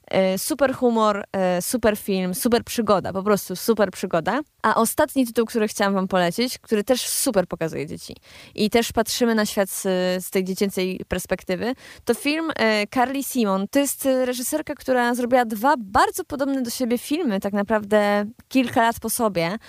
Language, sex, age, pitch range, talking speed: Polish, female, 20-39, 210-255 Hz, 160 wpm